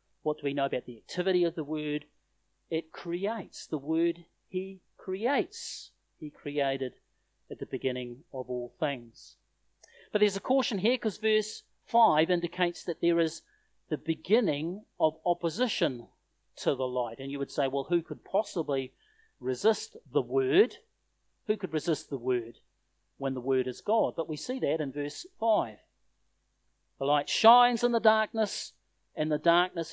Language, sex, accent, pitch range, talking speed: English, male, Australian, 145-195 Hz, 160 wpm